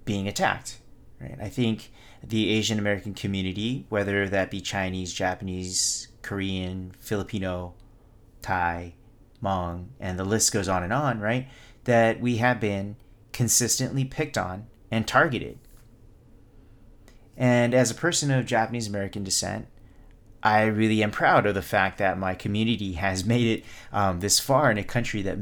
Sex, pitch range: male, 95-115 Hz